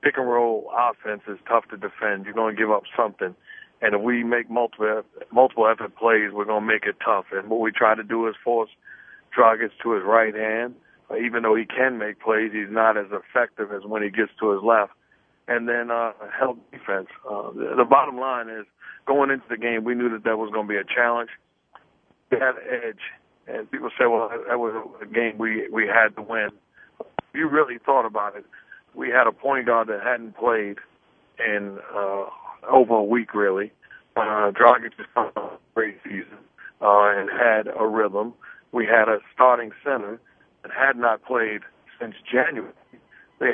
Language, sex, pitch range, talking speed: English, male, 110-120 Hz, 195 wpm